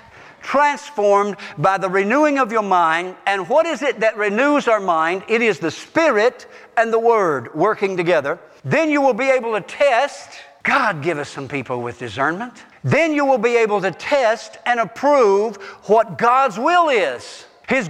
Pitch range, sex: 235-320 Hz, male